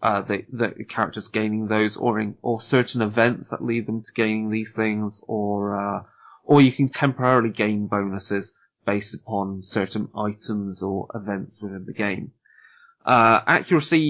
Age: 20-39